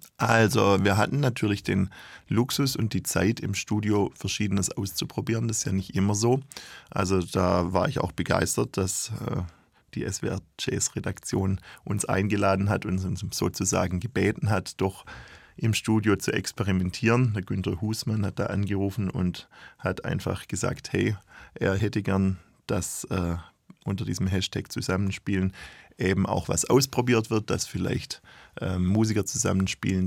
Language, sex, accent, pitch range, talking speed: German, male, German, 95-110 Hz, 150 wpm